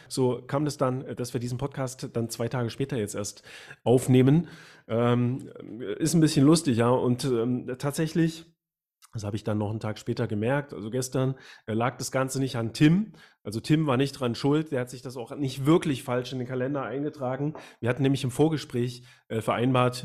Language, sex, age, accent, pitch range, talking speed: German, male, 30-49, German, 120-140 Hz, 200 wpm